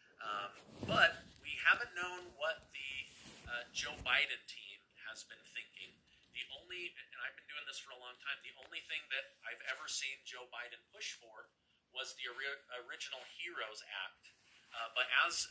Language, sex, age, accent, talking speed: English, male, 40-59, American, 175 wpm